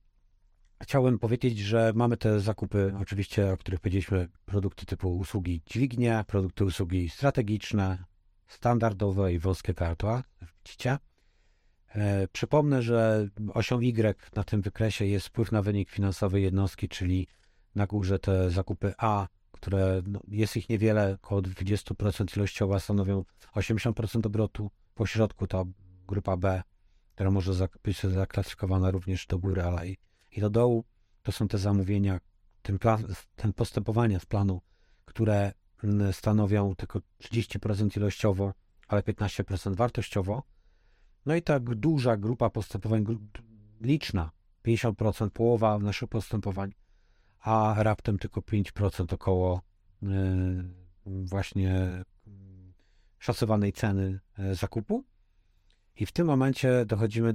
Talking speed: 115 wpm